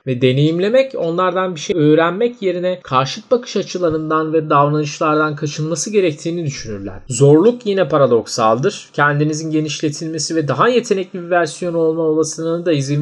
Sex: male